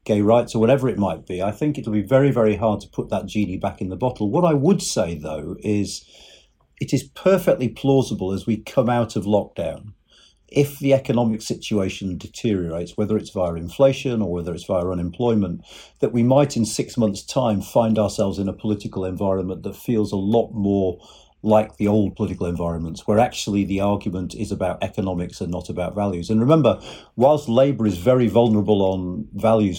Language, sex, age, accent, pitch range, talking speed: English, male, 50-69, British, 95-115 Hz, 190 wpm